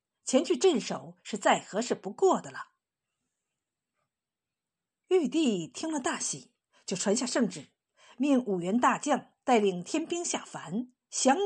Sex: female